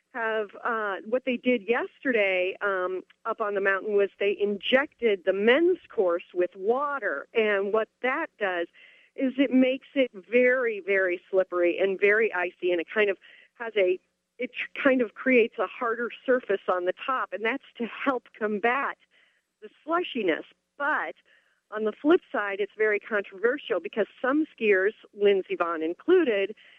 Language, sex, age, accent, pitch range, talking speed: English, female, 40-59, American, 190-250 Hz, 155 wpm